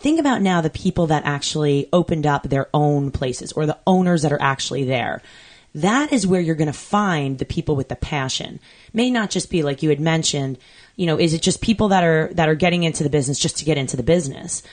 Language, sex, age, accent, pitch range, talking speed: English, female, 20-39, American, 145-185 Hz, 235 wpm